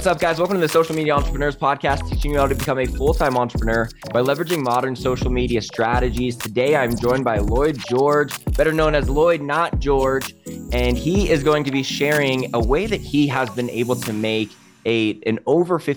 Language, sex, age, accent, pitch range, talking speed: English, male, 20-39, American, 110-135 Hz, 205 wpm